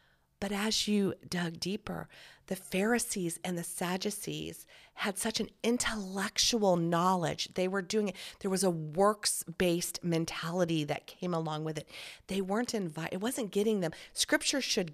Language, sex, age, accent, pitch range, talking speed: English, female, 40-59, American, 165-210 Hz, 155 wpm